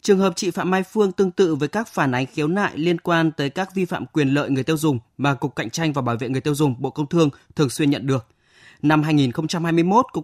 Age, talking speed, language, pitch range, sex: 20-39, 265 wpm, Vietnamese, 140-175 Hz, male